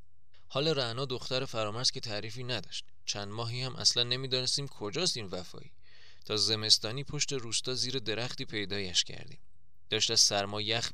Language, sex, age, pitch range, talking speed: Persian, male, 20-39, 100-130 Hz, 150 wpm